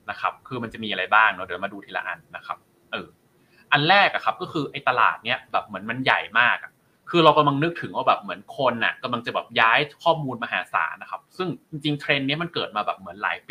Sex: male